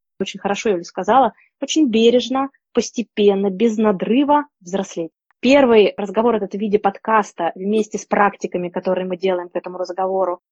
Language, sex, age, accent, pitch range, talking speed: Russian, female, 20-39, native, 195-240 Hz, 150 wpm